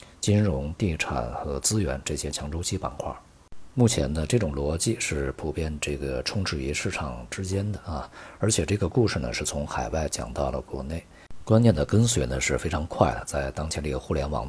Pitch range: 70-95 Hz